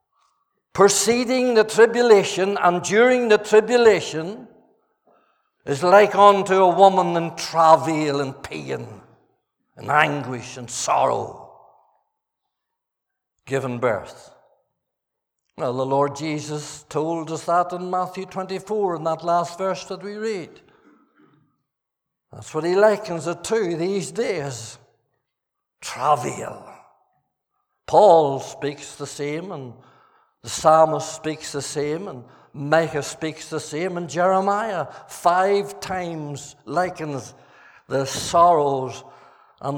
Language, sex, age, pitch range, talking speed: English, male, 60-79, 145-195 Hz, 110 wpm